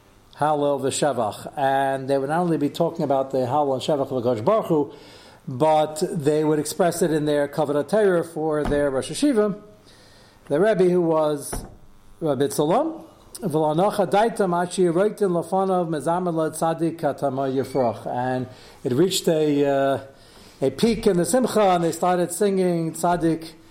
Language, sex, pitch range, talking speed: English, male, 130-175 Hz, 125 wpm